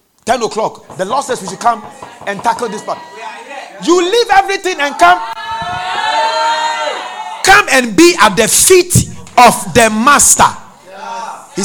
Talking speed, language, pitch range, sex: 135 wpm, English, 175-290 Hz, male